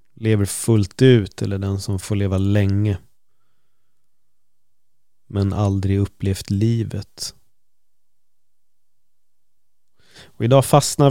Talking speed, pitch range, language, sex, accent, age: 85 wpm, 100-115 Hz, Swedish, male, native, 30-49